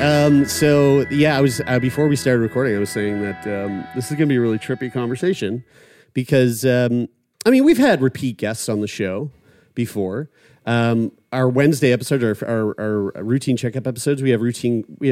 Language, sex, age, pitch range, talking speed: English, male, 30-49, 110-150 Hz, 200 wpm